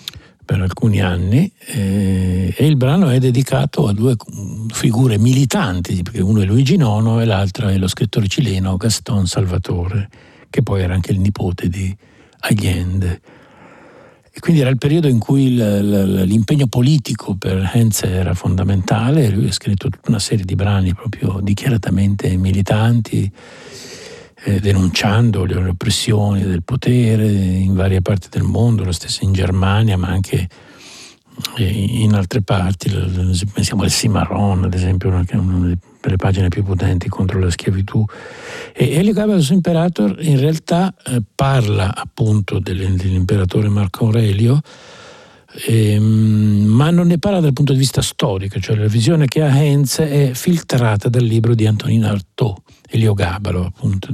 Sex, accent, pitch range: male, native, 95-125 Hz